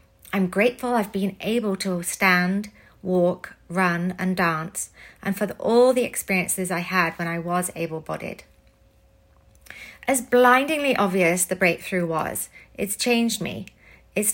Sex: female